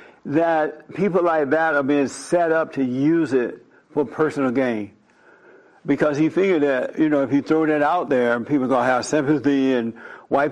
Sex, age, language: male, 60-79, English